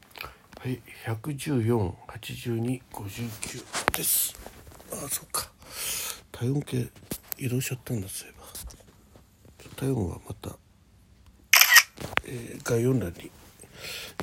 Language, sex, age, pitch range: Japanese, male, 60-79, 95-115 Hz